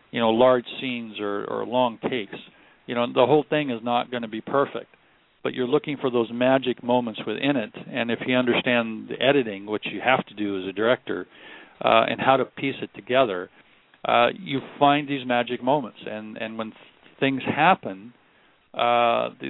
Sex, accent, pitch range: male, American, 115-135 Hz